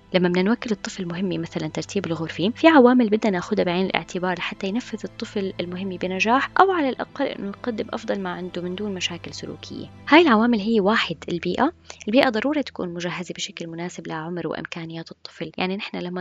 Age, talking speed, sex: 20-39, 180 wpm, female